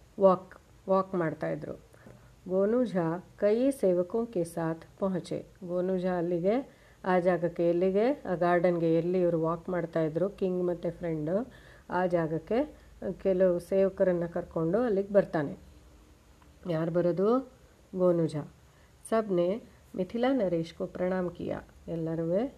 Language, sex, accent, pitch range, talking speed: Hindi, female, native, 170-200 Hz, 90 wpm